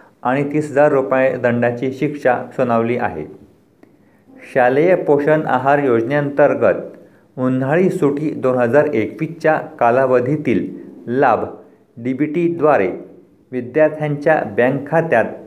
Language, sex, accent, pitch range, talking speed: Marathi, male, native, 125-155 Hz, 95 wpm